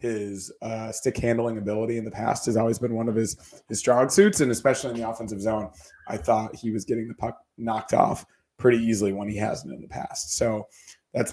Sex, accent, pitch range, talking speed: male, American, 110-125 Hz, 220 wpm